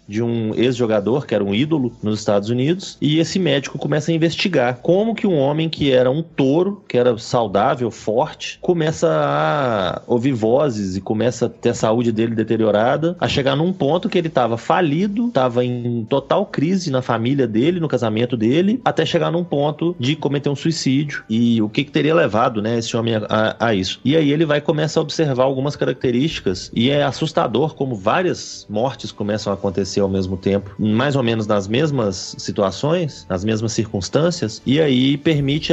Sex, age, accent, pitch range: male, 30-49, Brazilian, 110-150 Hz